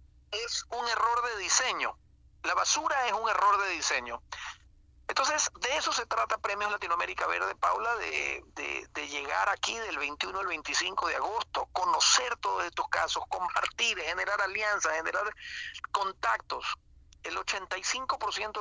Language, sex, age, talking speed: Spanish, male, 50-69, 140 wpm